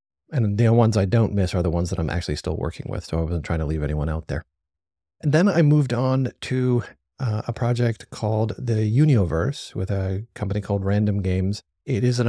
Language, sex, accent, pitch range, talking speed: English, male, American, 90-115 Hz, 220 wpm